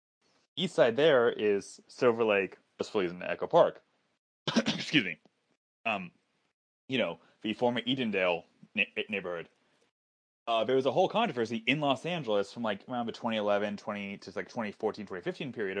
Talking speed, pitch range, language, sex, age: 150 wpm, 100-130 Hz, English, male, 20-39